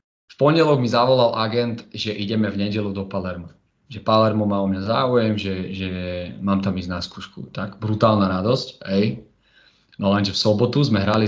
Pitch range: 100-115 Hz